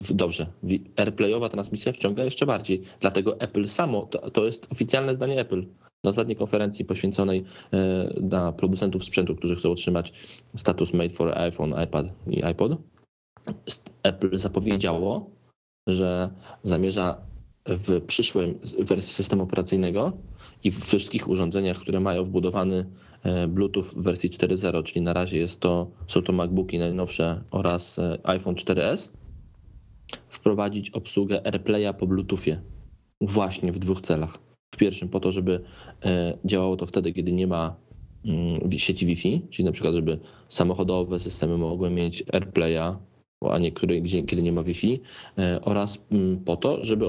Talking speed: 135 wpm